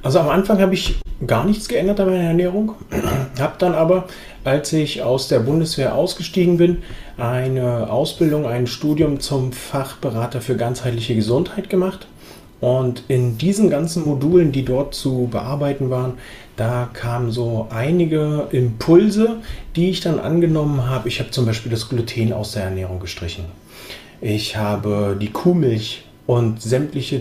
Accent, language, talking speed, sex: German, German, 150 wpm, male